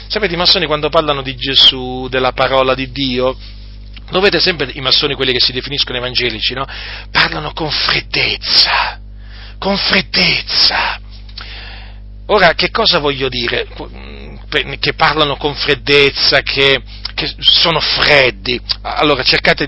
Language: Italian